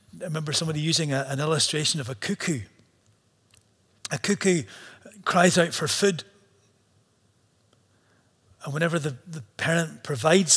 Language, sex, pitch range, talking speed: English, male, 115-175 Hz, 120 wpm